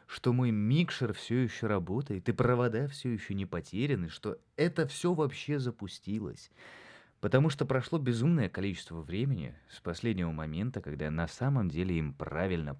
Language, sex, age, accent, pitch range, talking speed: Russian, male, 20-39, native, 85-135 Hz, 155 wpm